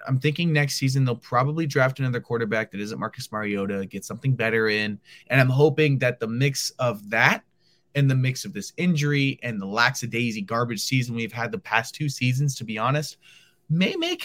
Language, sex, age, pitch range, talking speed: English, male, 20-39, 120-170 Hz, 205 wpm